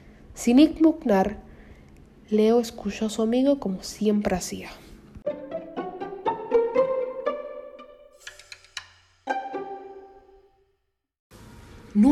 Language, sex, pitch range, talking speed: Spanish, female, 195-275 Hz, 55 wpm